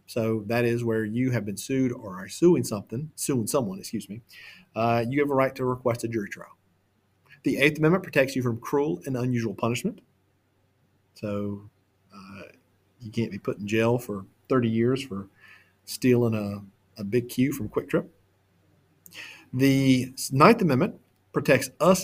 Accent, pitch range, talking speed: American, 110-155 Hz, 165 wpm